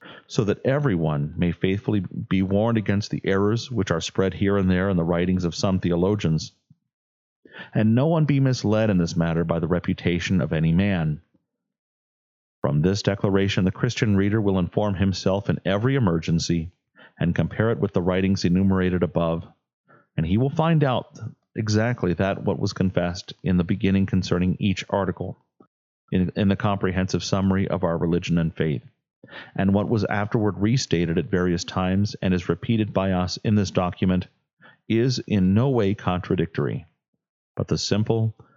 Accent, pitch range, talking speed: American, 90-105 Hz, 165 wpm